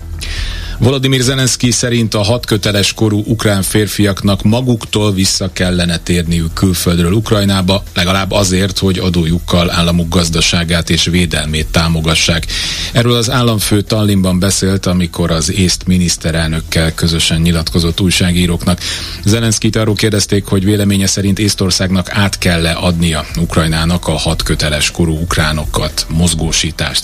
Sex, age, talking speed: male, 40-59, 115 wpm